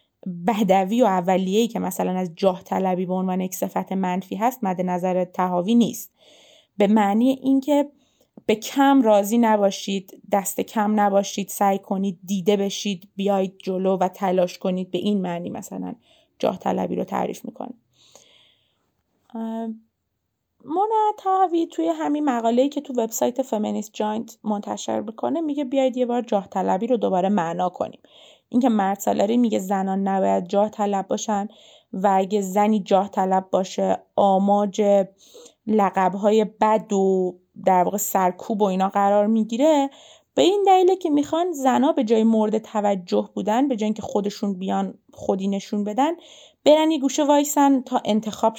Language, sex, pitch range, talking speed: Persian, female, 195-260 Hz, 145 wpm